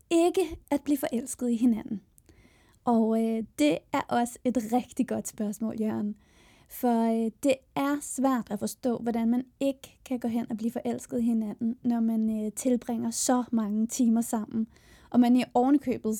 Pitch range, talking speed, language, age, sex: 220-255 Hz, 170 wpm, Danish, 20-39, female